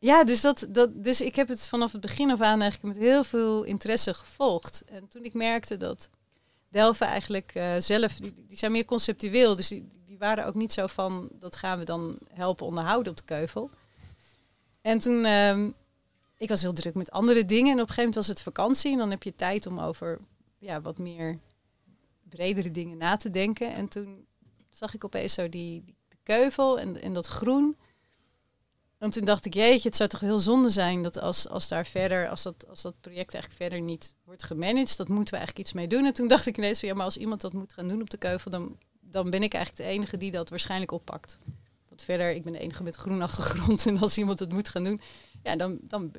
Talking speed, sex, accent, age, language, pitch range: 225 wpm, female, Dutch, 30-49, Dutch, 175-225 Hz